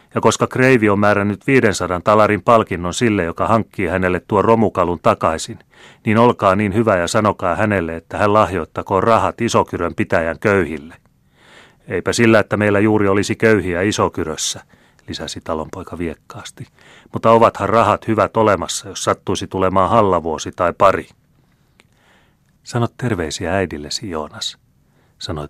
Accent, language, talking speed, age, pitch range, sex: native, Finnish, 130 wpm, 30-49, 85-110 Hz, male